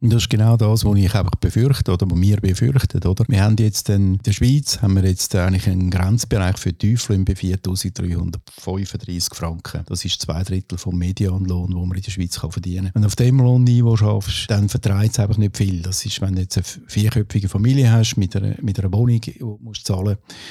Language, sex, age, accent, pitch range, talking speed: German, male, 50-69, Austrian, 95-115 Hz, 220 wpm